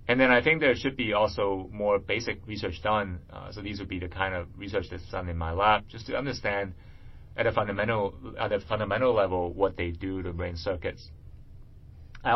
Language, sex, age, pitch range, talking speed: English, male, 30-49, 85-105 Hz, 210 wpm